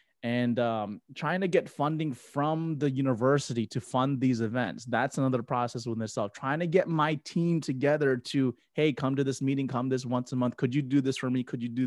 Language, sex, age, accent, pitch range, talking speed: English, male, 20-39, American, 120-155 Hz, 220 wpm